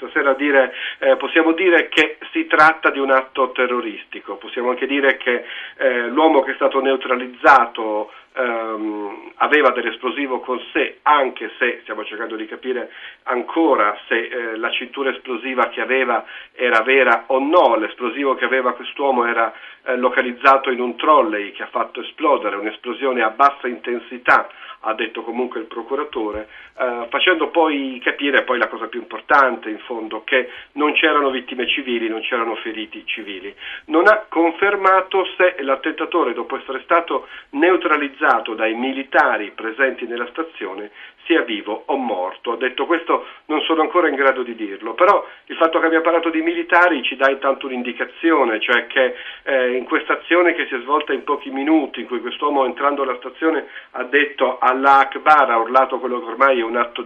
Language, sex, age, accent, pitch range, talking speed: Italian, male, 40-59, native, 125-160 Hz, 165 wpm